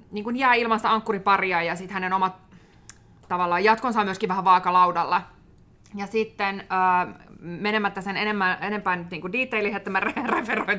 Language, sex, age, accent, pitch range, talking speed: Finnish, female, 20-39, native, 180-195 Hz, 135 wpm